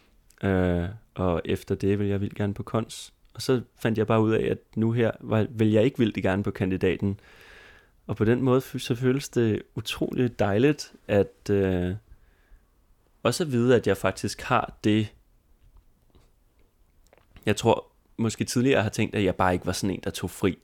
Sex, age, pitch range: male, 30-49, 95-115 Hz